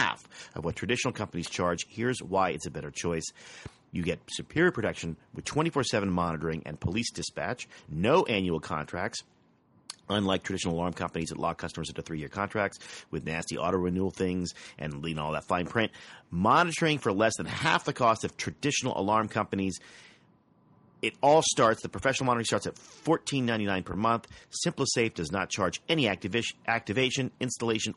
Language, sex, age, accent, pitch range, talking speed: English, male, 40-59, American, 90-130 Hz, 160 wpm